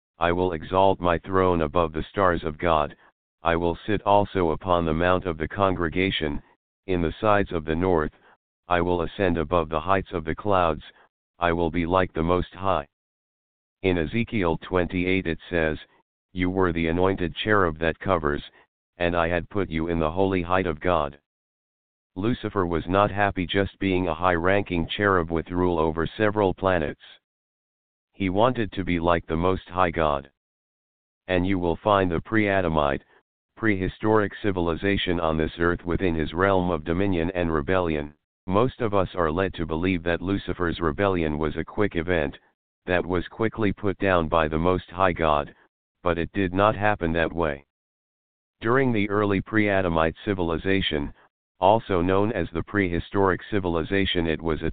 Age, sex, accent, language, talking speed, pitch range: 50-69, male, American, English, 165 wpm, 80-95 Hz